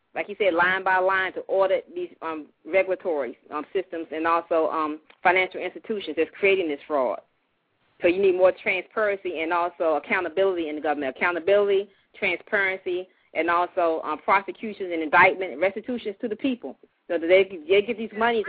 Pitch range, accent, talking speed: 175-210 Hz, American, 170 wpm